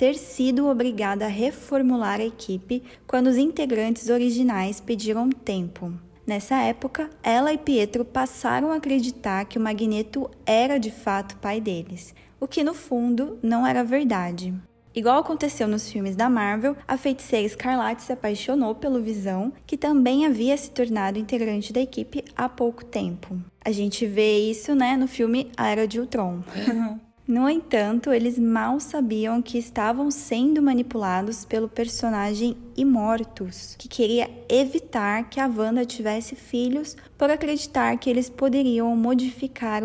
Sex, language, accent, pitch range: female, Portuguese, Brazilian, 215-265 Hz